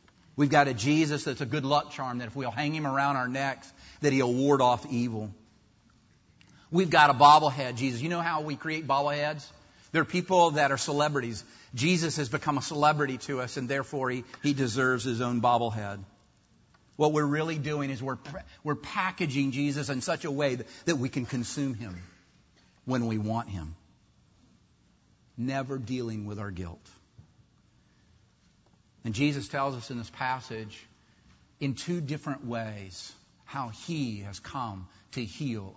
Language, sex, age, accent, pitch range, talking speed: English, male, 50-69, American, 115-145 Hz, 165 wpm